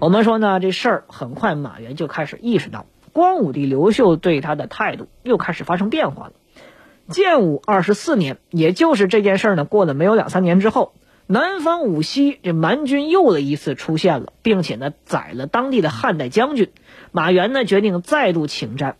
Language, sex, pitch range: Chinese, female, 160-245 Hz